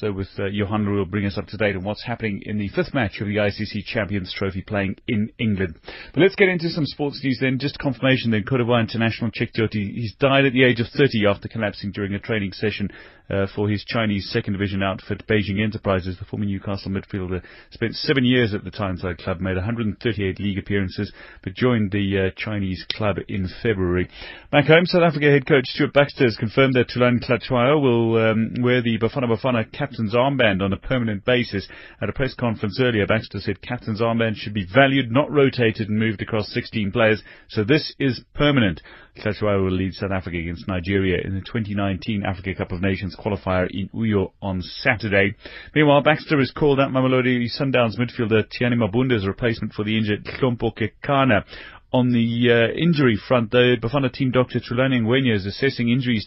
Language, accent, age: English, British, 30-49